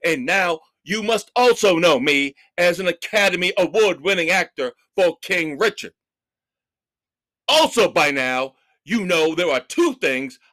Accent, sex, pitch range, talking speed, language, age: American, male, 195-290 Hz, 135 wpm, English, 50-69